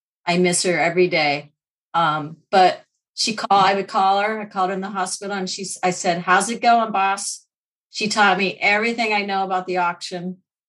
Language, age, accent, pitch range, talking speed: English, 30-49, American, 170-205 Hz, 200 wpm